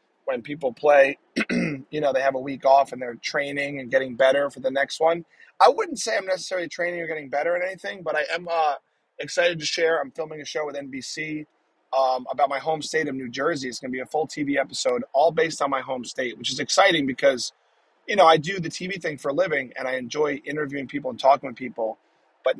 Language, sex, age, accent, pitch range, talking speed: English, male, 30-49, American, 135-175 Hz, 240 wpm